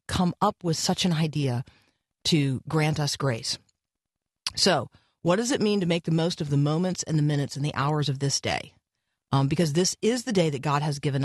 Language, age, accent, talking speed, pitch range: English, 40-59, American, 220 wpm, 150-190 Hz